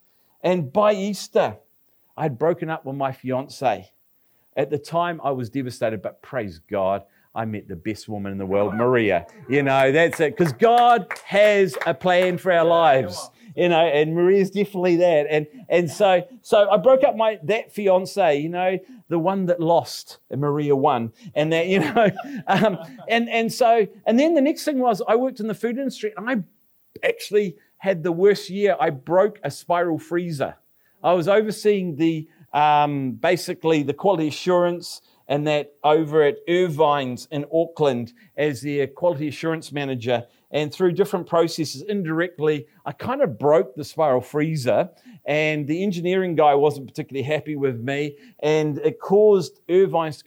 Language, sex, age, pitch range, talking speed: English, male, 40-59, 145-195 Hz, 170 wpm